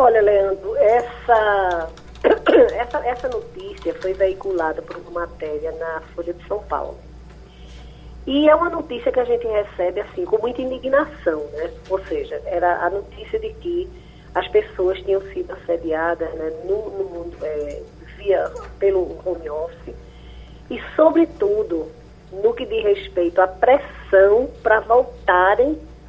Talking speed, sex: 120 wpm, female